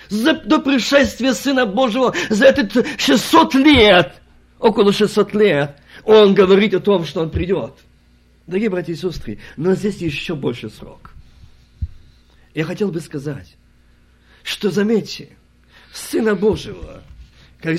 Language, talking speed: Russian, 125 wpm